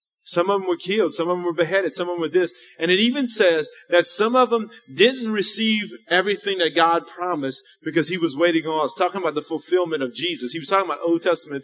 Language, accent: English, American